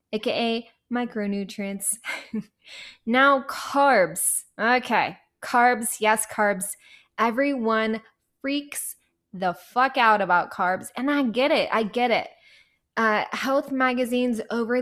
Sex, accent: female, American